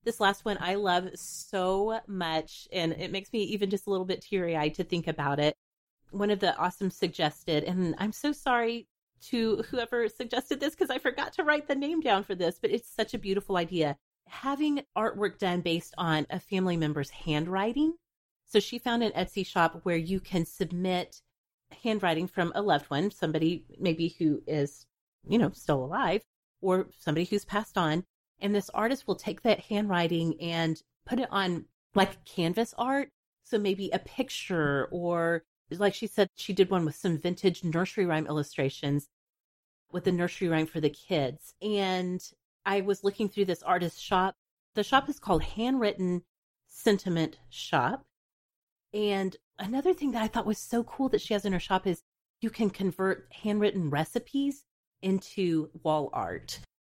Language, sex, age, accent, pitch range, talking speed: English, female, 30-49, American, 165-215 Hz, 175 wpm